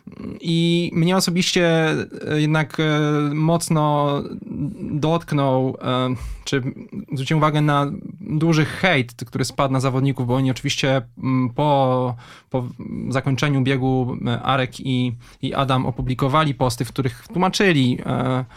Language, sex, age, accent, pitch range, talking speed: Polish, male, 20-39, native, 130-160 Hz, 105 wpm